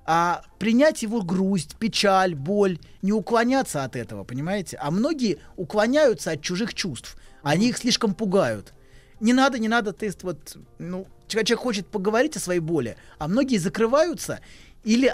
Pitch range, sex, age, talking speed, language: 175-230 Hz, male, 20-39, 150 wpm, Russian